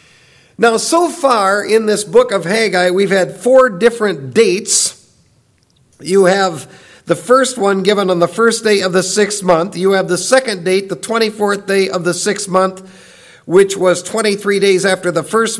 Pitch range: 185-225 Hz